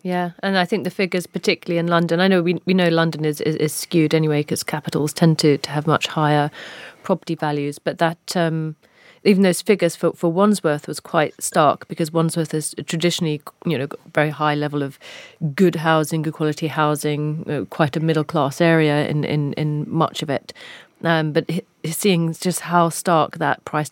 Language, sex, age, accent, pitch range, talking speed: English, female, 40-59, British, 155-180 Hz, 200 wpm